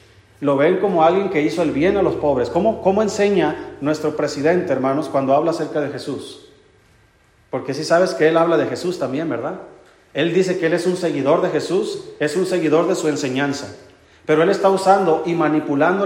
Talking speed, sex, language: 200 wpm, male, Spanish